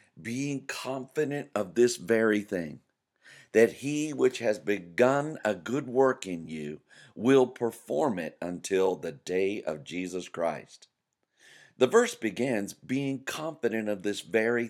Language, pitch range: English, 100-140 Hz